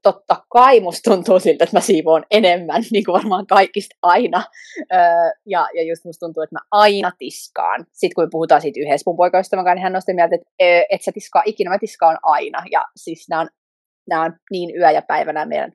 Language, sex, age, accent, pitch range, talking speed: Finnish, female, 20-39, native, 165-255 Hz, 200 wpm